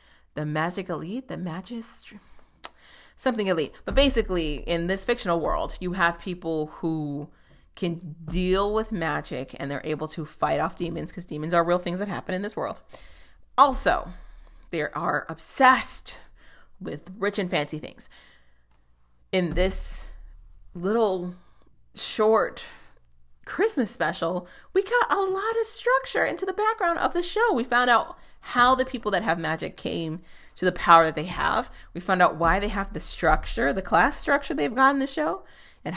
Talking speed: 165 wpm